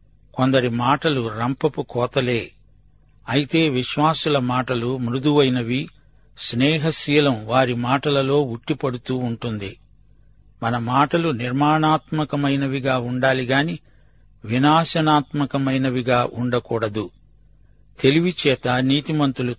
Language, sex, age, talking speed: Telugu, male, 60-79, 65 wpm